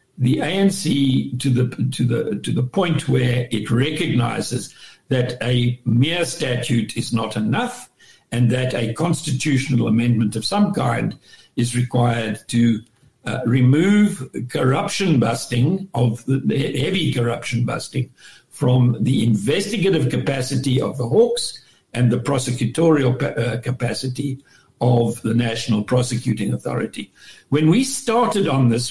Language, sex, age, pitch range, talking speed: English, male, 60-79, 120-145 Hz, 125 wpm